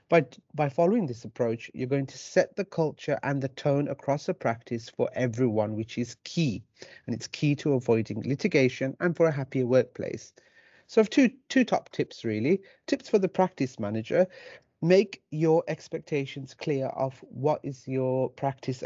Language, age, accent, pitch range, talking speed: English, 40-59, British, 125-160 Hz, 175 wpm